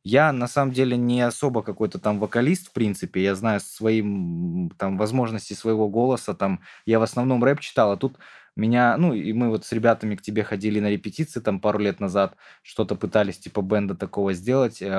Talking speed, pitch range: 190 wpm, 110-140 Hz